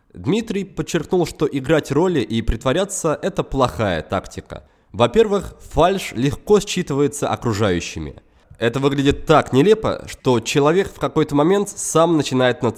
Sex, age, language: male, 20-39, Russian